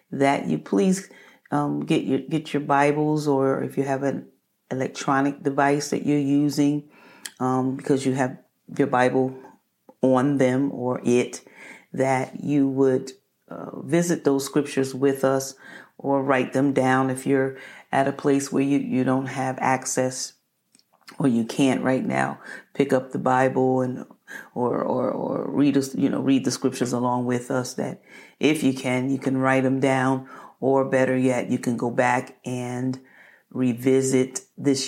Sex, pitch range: female, 130-135 Hz